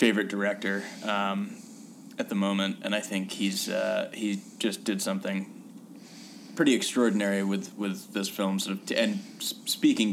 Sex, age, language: male, 20-39, English